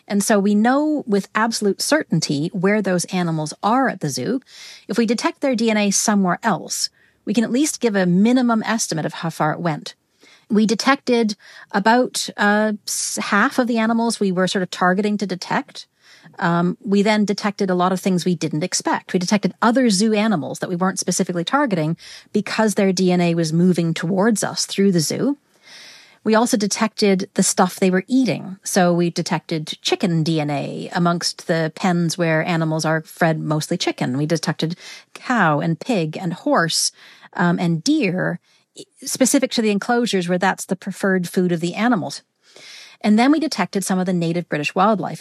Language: English